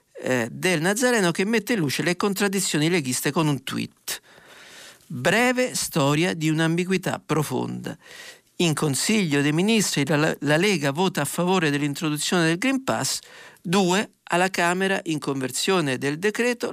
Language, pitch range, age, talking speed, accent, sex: Italian, 145-195 Hz, 50-69, 135 wpm, native, male